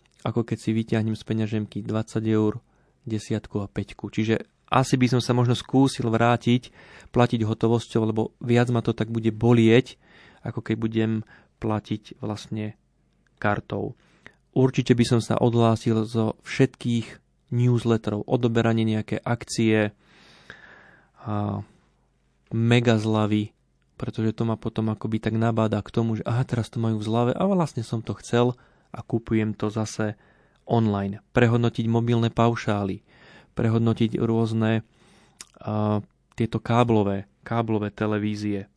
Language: Slovak